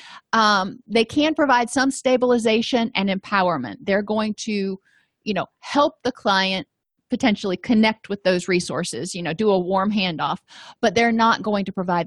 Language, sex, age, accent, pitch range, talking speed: English, female, 40-59, American, 200-255 Hz, 165 wpm